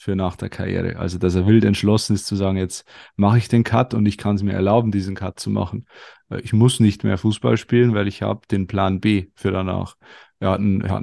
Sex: male